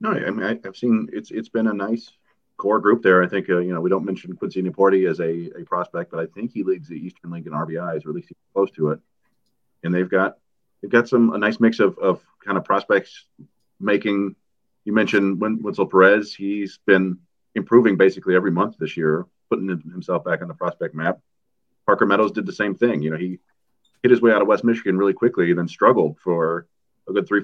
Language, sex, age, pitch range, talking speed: English, male, 30-49, 90-110 Hz, 225 wpm